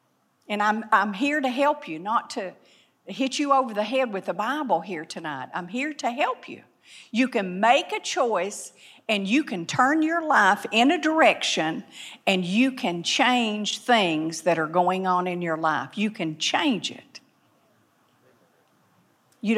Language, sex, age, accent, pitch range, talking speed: English, female, 50-69, American, 195-275 Hz, 170 wpm